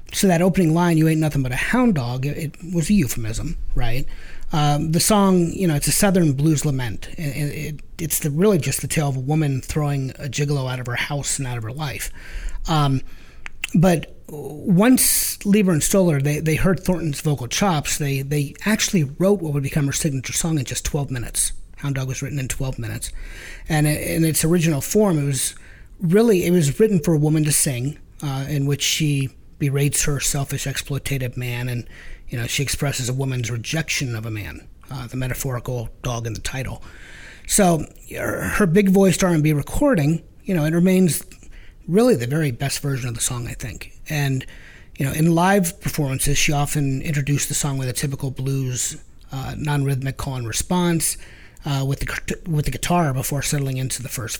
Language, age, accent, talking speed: English, 30-49, American, 195 wpm